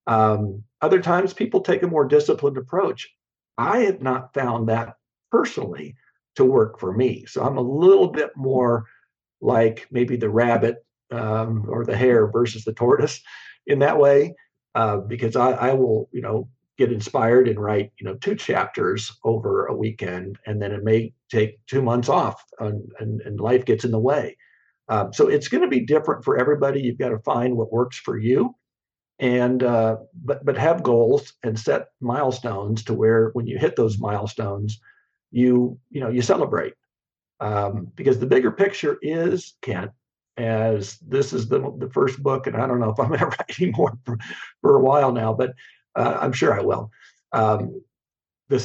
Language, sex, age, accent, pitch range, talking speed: English, male, 50-69, American, 110-140 Hz, 180 wpm